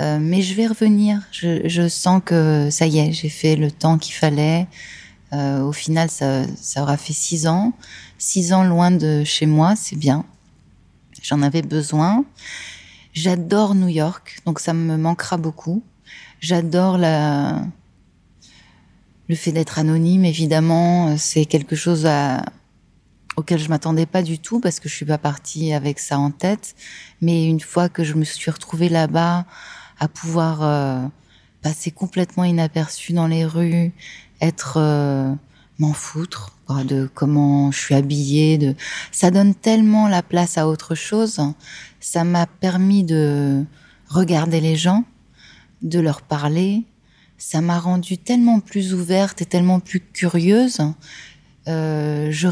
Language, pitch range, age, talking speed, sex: French, 150-180 Hz, 20-39, 150 wpm, female